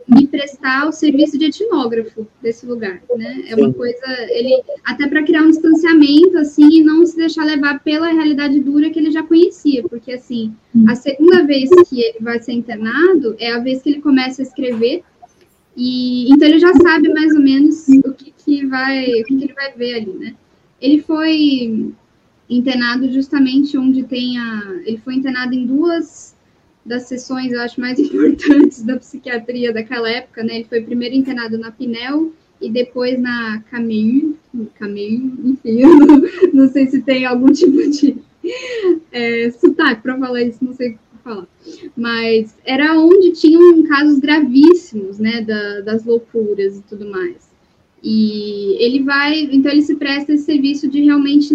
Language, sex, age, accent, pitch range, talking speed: Portuguese, female, 10-29, Brazilian, 240-305 Hz, 165 wpm